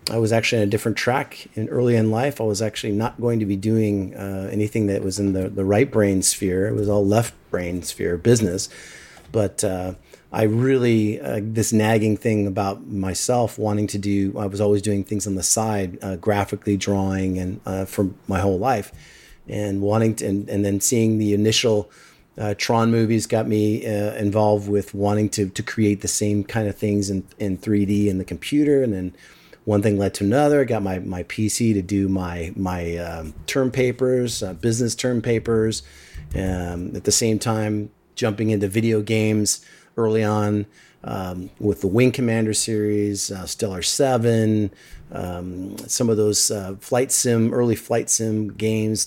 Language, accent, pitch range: English, American, 95-110 Hz